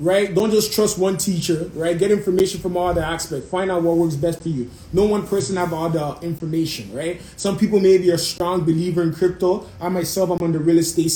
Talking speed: 235 wpm